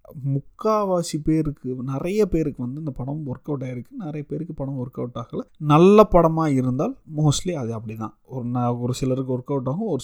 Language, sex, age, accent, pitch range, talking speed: Tamil, male, 30-49, native, 125-170 Hz, 155 wpm